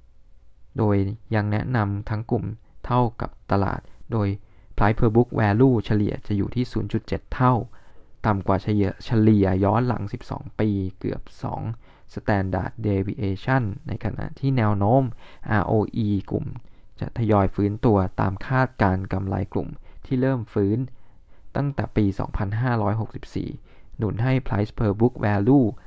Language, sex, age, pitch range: Thai, male, 20-39, 100-120 Hz